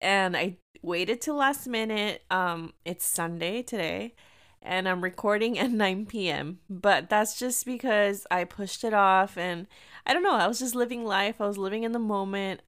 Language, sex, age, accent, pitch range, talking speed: English, female, 20-39, American, 180-230 Hz, 180 wpm